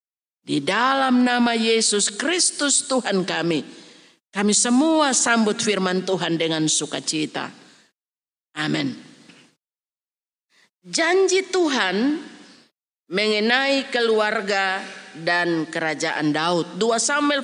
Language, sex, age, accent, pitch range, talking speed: Indonesian, female, 40-59, native, 205-305 Hz, 85 wpm